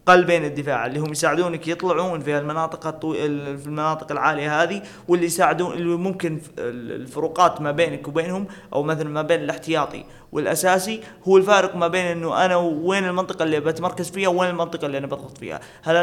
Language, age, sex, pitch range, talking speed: Arabic, 20-39, male, 150-180 Hz, 170 wpm